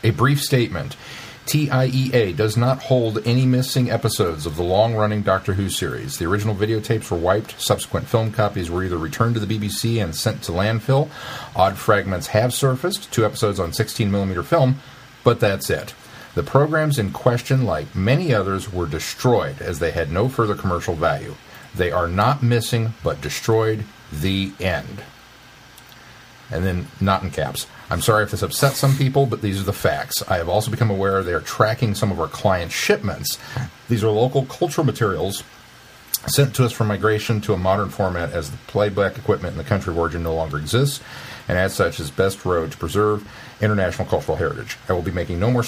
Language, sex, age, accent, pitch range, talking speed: English, male, 40-59, American, 95-125 Hz, 190 wpm